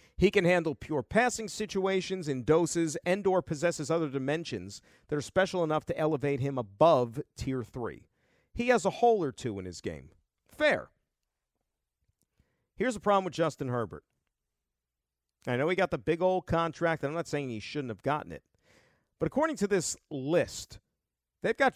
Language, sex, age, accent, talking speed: English, male, 50-69, American, 170 wpm